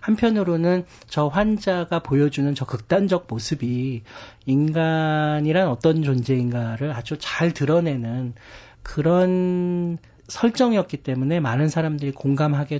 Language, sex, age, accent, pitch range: Korean, male, 40-59, native, 125-160 Hz